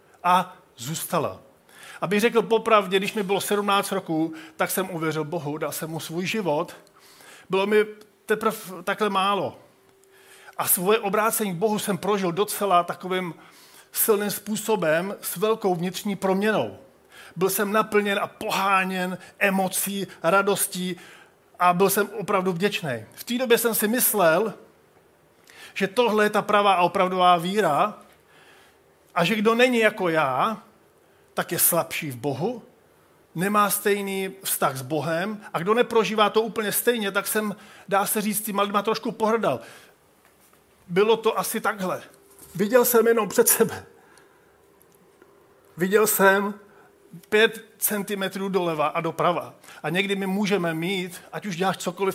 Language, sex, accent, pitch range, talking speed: Czech, male, native, 180-215 Hz, 140 wpm